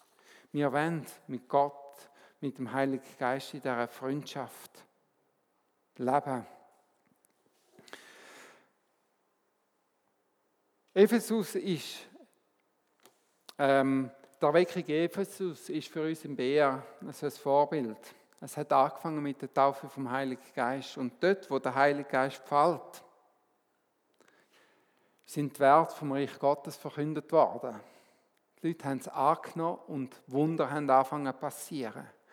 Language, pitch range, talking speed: German, 135-155 Hz, 110 wpm